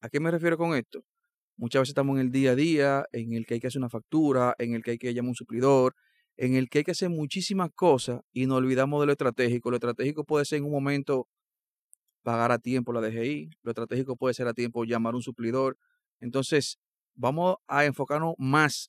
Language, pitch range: Spanish, 125-160 Hz